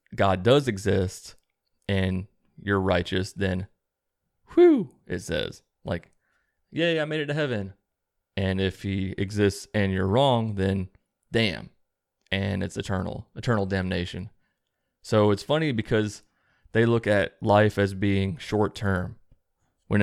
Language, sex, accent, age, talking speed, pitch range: English, male, American, 20-39, 130 wpm, 95-110 Hz